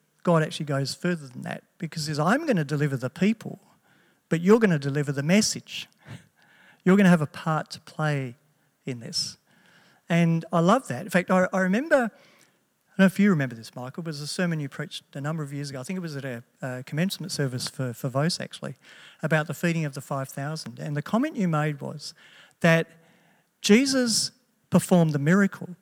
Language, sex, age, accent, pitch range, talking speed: English, male, 50-69, Australian, 140-185 Hz, 200 wpm